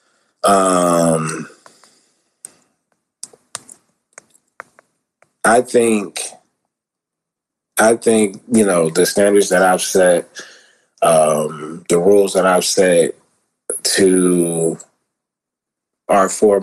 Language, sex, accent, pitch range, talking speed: English, male, American, 90-105 Hz, 75 wpm